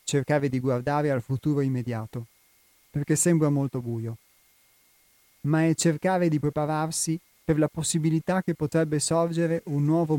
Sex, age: male, 30-49